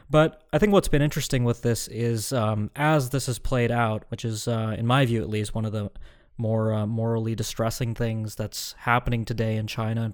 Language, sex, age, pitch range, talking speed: English, male, 20-39, 110-125 Hz, 220 wpm